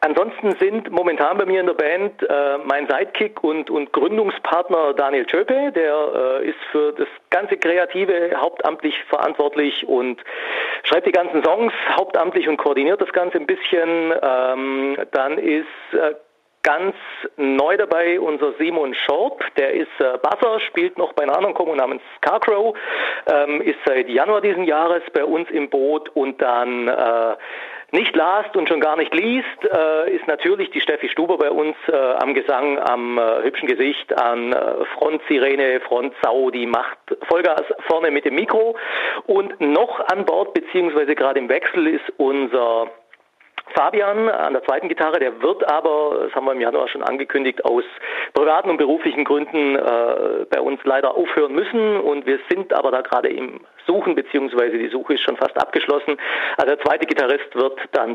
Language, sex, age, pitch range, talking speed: German, male, 40-59, 135-225 Hz, 165 wpm